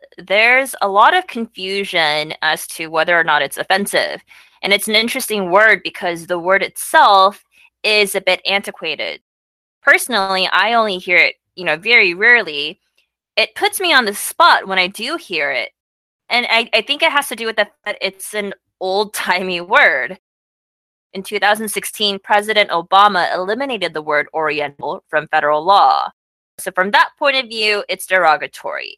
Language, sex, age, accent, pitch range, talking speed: English, female, 20-39, American, 180-230 Hz, 165 wpm